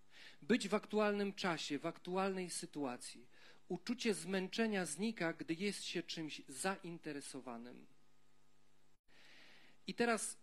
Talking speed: 100 wpm